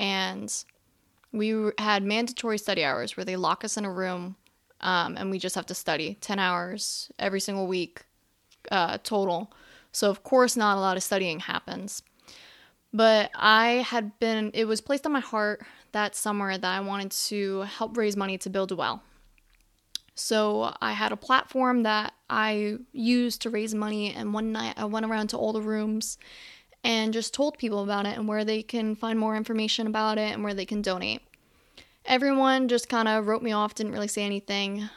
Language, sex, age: English, female, 20-39